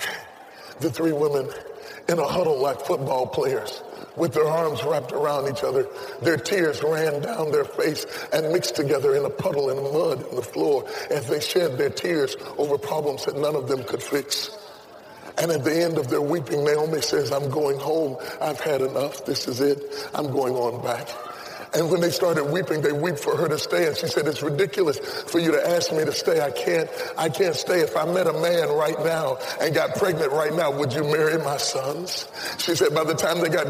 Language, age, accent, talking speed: English, 30-49, American, 215 wpm